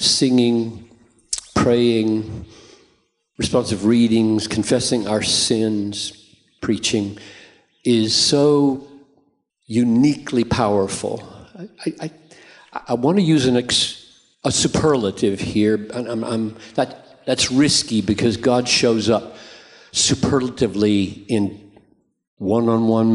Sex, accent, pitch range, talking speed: male, American, 110-135 Hz, 95 wpm